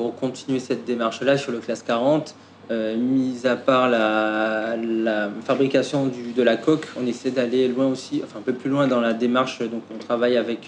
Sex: male